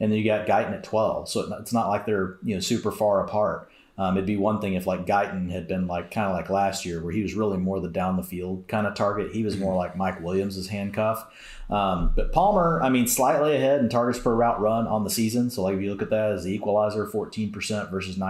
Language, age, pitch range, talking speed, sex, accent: English, 30-49, 95-115 Hz, 255 wpm, male, American